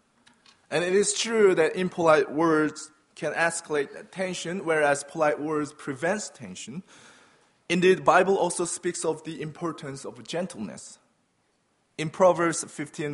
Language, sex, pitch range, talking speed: English, male, 145-190 Hz, 130 wpm